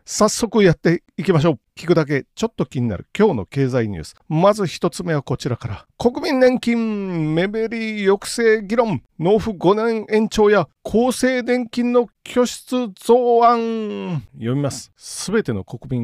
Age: 40-59